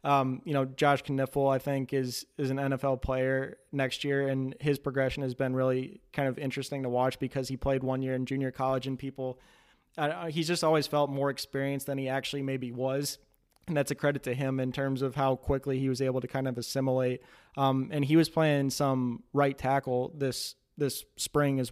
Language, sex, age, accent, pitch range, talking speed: English, male, 20-39, American, 130-140 Hz, 215 wpm